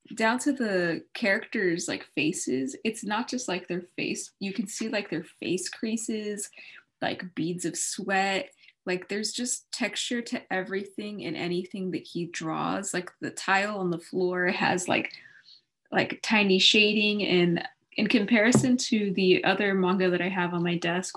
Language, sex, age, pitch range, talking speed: English, female, 20-39, 175-215 Hz, 165 wpm